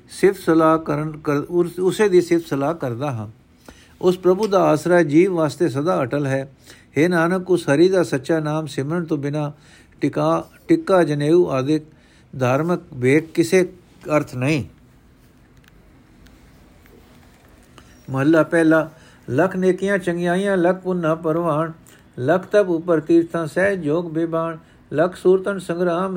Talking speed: 125 wpm